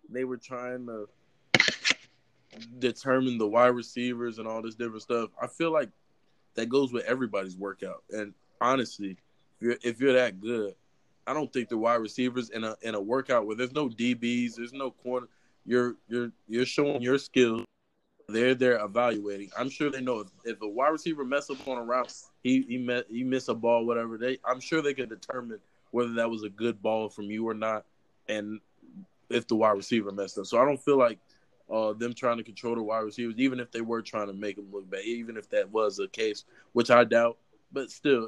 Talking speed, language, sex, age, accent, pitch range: 210 wpm, English, male, 20-39, American, 110-130 Hz